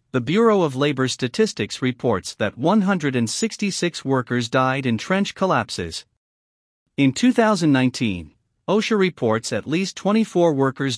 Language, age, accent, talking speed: English, 50-69, American, 115 wpm